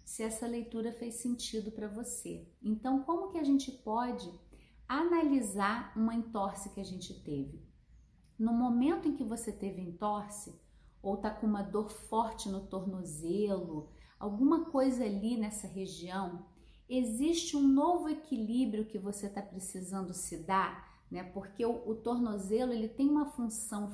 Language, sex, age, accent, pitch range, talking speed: Portuguese, female, 30-49, Brazilian, 195-250 Hz, 150 wpm